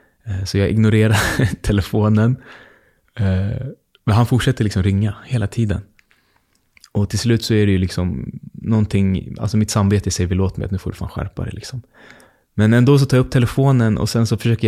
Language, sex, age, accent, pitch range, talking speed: English, male, 20-39, Swedish, 100-120 Hz, 185 wpm